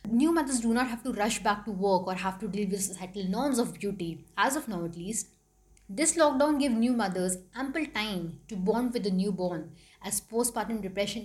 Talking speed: 210 wpm